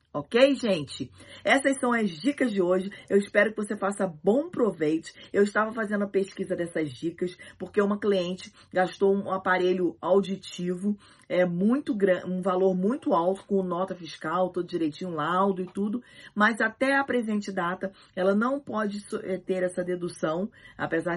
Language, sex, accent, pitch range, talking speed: Portuguese, female, Brazilian, 170-210 Hz, 160 wpm